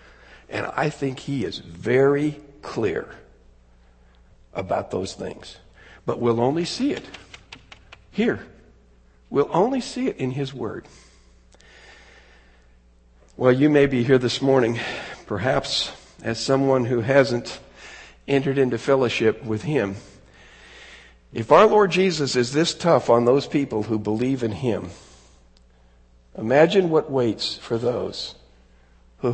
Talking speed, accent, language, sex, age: 125 wpm, American, English, male, 60-79